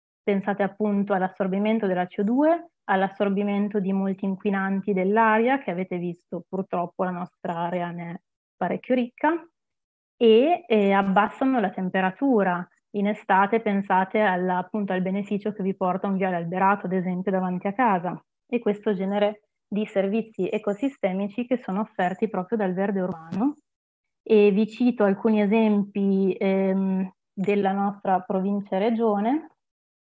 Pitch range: 190-220 Hz